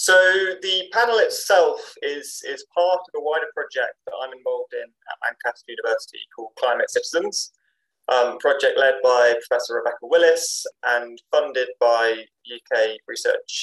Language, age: English, 20-39